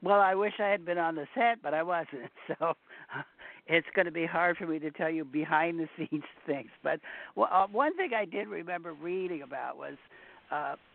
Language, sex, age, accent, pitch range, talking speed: English, male, 60-79, American, 145-180 Hz, 205 wpm